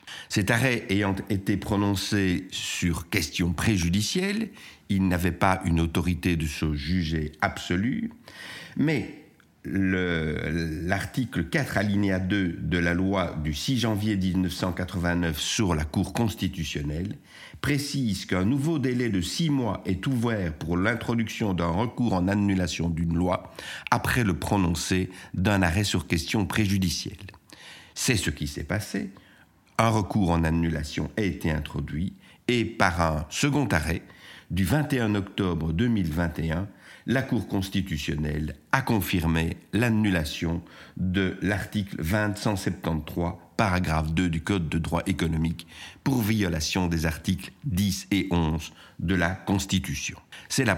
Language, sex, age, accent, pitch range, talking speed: French, male, 50-69, French, 85-105 Hz, 130 wpm